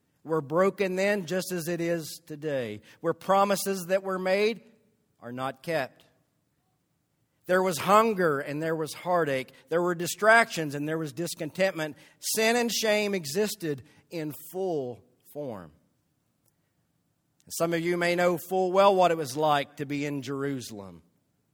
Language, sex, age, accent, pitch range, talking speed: English, male, 50-69, American, 145-200 Hz, 145 wpm